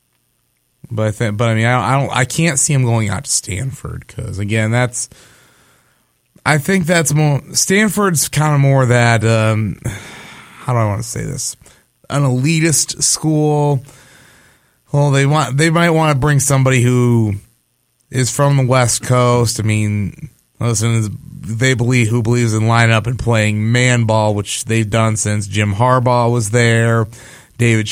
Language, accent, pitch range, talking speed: English, American, 110-135 Hz, 170 wpm